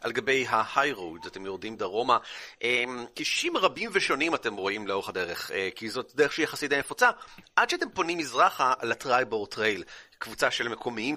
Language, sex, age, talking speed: Hebrew, male, 30-49, 170 wpm